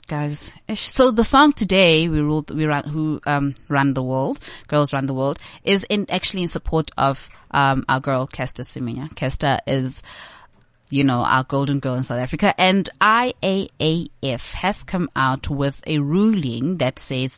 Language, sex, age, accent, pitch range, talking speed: English, female, 20-39, South African, 135-170 Hz, 170 wpm